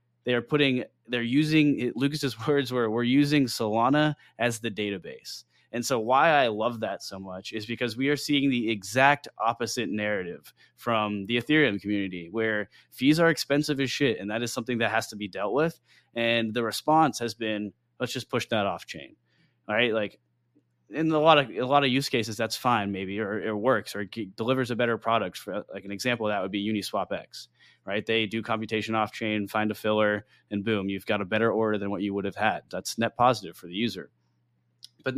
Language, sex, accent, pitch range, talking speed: English, male, American, 105-130 Hz, 215 wpm